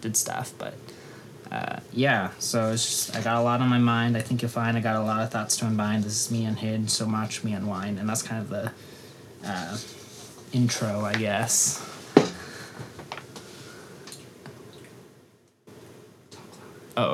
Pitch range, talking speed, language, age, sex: 110-120 Hz, 165 wpm, English, 20-39, male